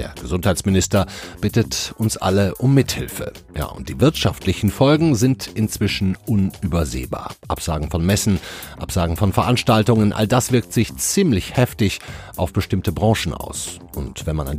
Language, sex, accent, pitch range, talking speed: German, male, German, 95-125 Hz, 145 wpm